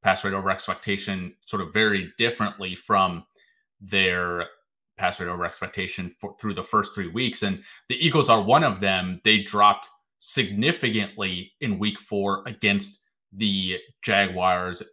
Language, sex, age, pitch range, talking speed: English, male, 30-49, 100-115 Hz, 145 wpm